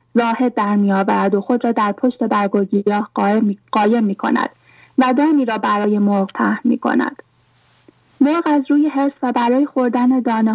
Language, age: English, 30-49